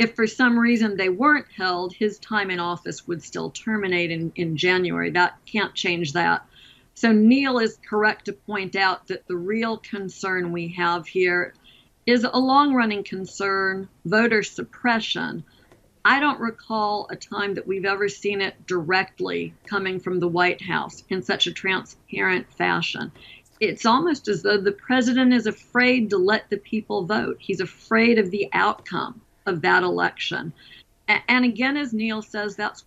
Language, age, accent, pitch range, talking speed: English, 50-69, American, 185-230 Hz, 160 wpm